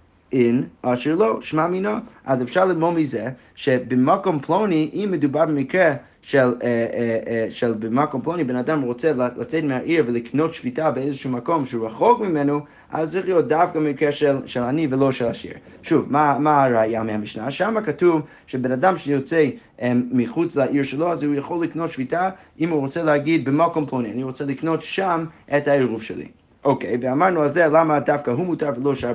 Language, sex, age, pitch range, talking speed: Hebrew, male, 30-49, 125-160 Hz, 180 wpm